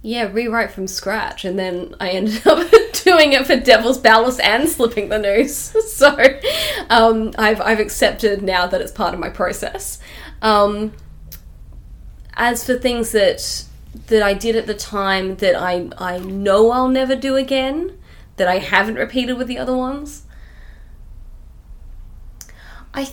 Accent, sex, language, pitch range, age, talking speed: Australian, female, English, 175-230 Hz, 20-39, 150 wpm